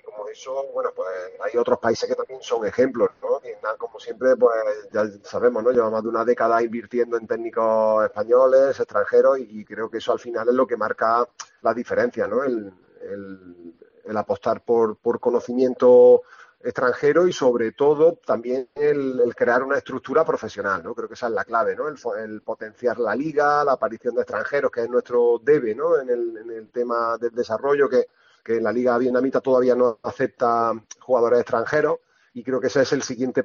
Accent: Spanish